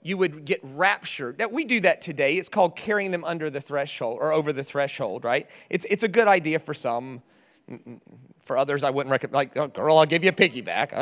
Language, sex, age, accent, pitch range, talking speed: English, male, 30-49, American, 155-220 Hz, 225 wpm